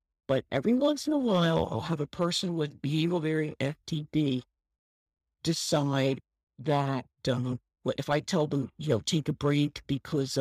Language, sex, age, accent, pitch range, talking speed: English, male, 50-69, American, 125-165 Hz, 155 wpm